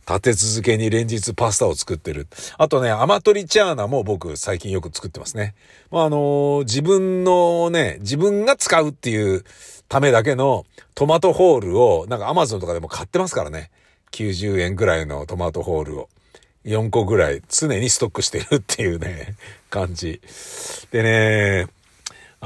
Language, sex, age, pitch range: Japanese, male, 50-69, 100-150 Hz